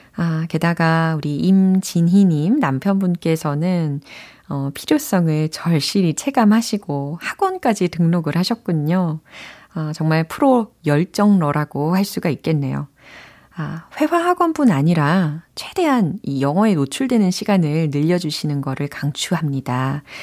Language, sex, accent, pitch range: Korean, female, native, 150-210 Hz